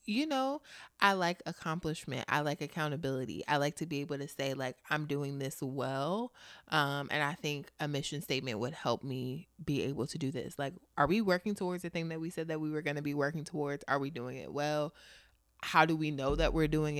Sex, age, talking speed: female, 20-39, 230 wpm